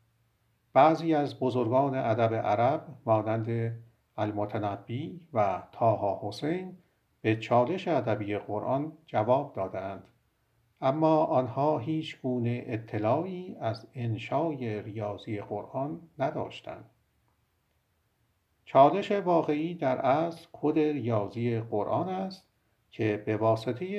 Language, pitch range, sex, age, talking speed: Persian, 110-140 Hz, male, 50-69, 90 wpm